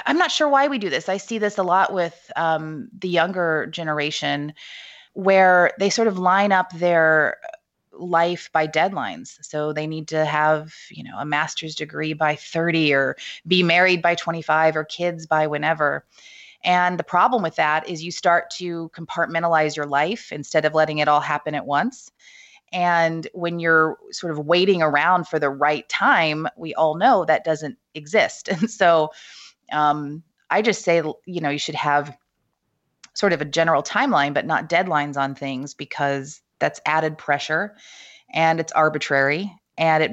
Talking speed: 170 wpm